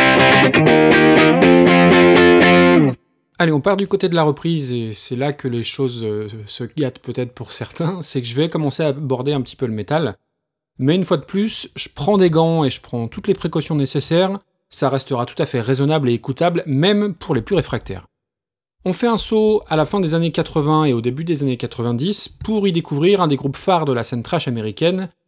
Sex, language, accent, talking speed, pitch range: male, French, French, 210 wpm, 125-175 Hz